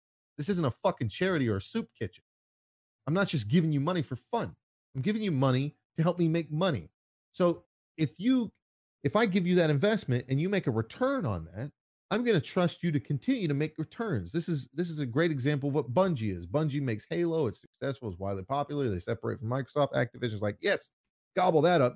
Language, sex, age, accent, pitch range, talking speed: English, male, 30-49, American, 120-165 Hz, 220 wpm